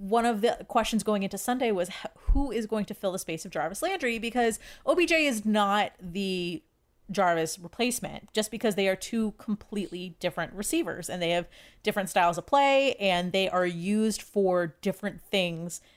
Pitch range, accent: 180-235 Hz, American